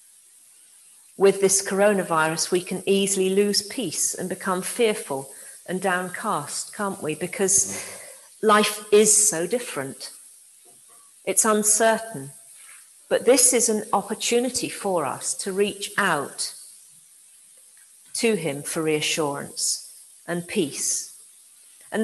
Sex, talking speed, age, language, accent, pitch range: female, 105 wpm, 50-69, English, British, 190-265 Hz